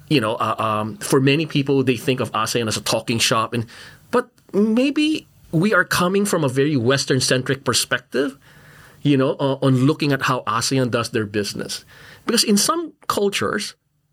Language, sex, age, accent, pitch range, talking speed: English, male, 30-49, Filipino, 135-210 Hz, 180 wpm